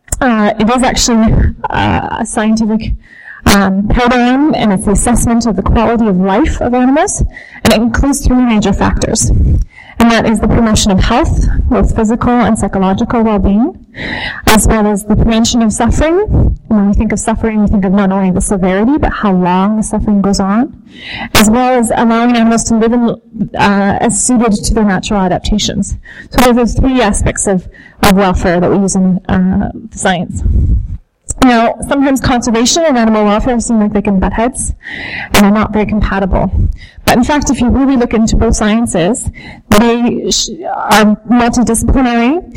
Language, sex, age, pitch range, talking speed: English, female, 30-49, 205-240 Hz, 175 wpm